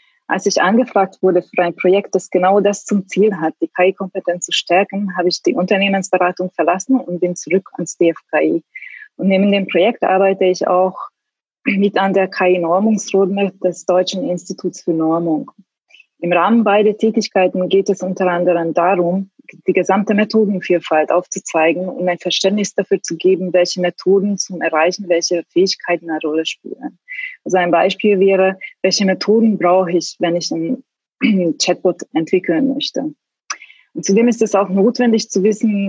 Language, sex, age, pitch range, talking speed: German, female, 20-39, 175-210 Hz, 155 wpm